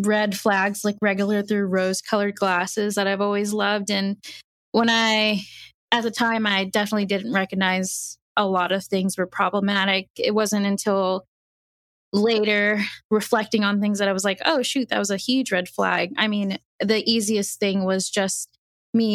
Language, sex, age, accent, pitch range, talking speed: English, female, 20-39, American, 190-215 Hz, 170 wpm